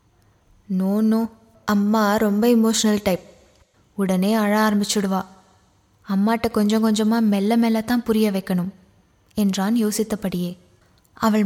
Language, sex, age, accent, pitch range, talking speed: Tamil, female, 20-39, native, 190-235 Hz, 95 wpm